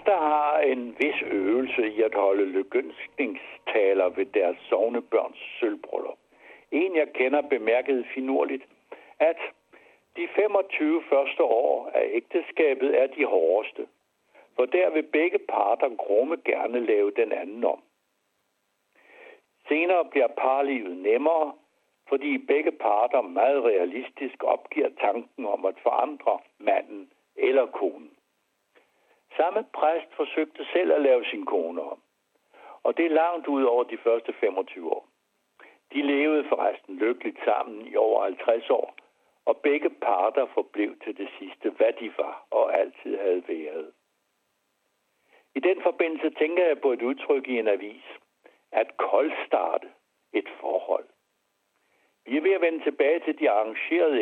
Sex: male